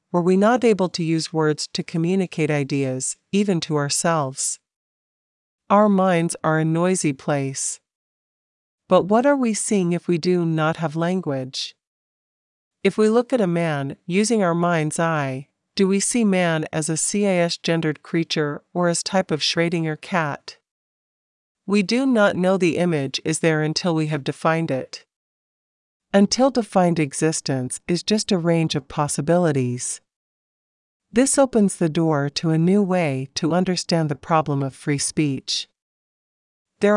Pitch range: 150-190 Hz